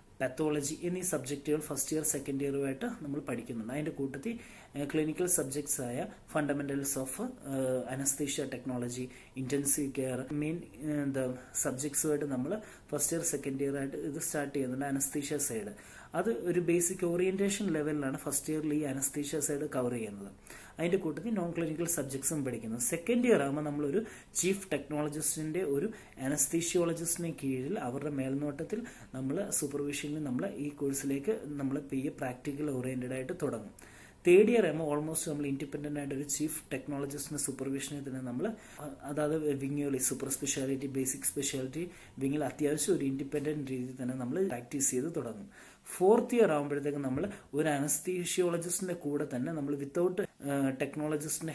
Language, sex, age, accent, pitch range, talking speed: Malayalam, male, 30-49, native, 135-160 Hz, 135 wpm